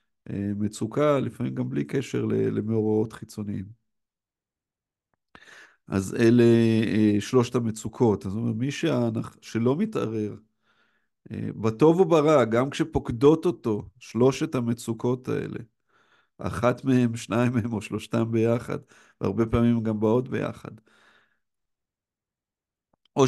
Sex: male